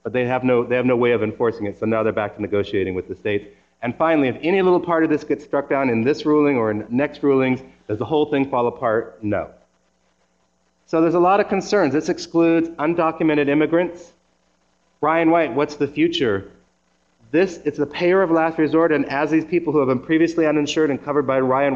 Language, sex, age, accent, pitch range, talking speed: English, male, 30-49, American, 110-150 Hz, 220 wpm